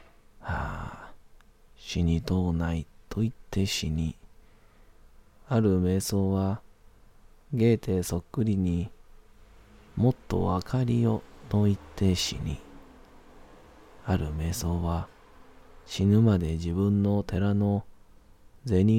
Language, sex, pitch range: Japanese, male, 85-105 Hz